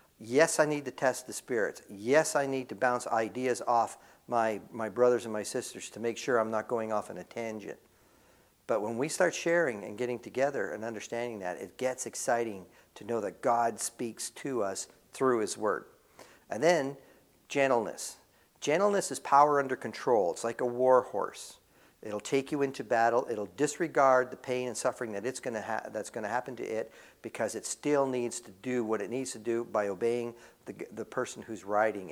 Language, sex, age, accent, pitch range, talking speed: English, male, 50-69, American, 115-135 Hz, 190 wpm